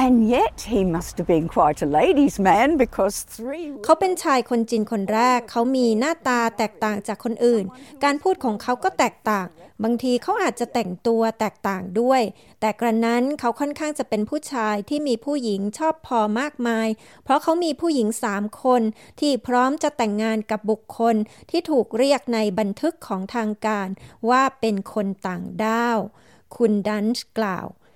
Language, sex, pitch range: Thai, female, 210-255 Hz